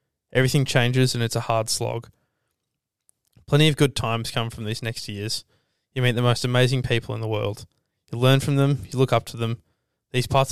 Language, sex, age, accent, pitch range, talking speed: English, male, 20-39, Australian, 110-130 Hz, 205 wpm